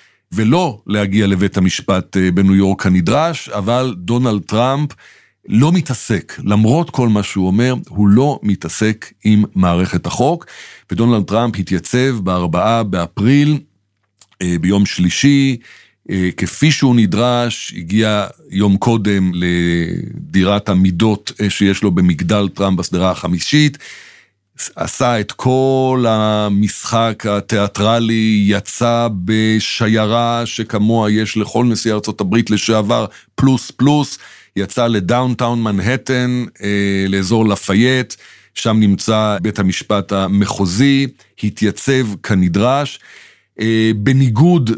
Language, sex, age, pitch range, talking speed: Hebrew, male, 60-79, 100-120 Hz, 100 wpm